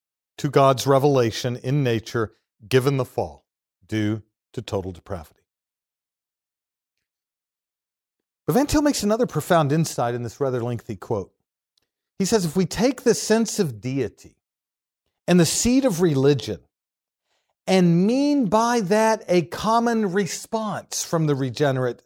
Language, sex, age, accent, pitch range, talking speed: English, male, 50-69, American, 115-195 Hz, 130 wpm